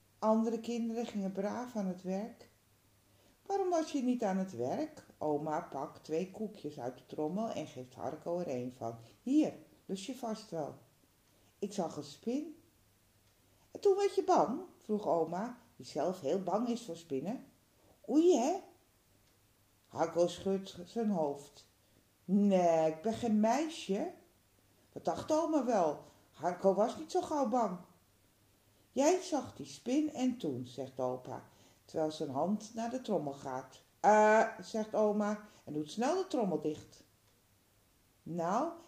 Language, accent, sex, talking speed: Dutch, Dutch, female, 150 wpm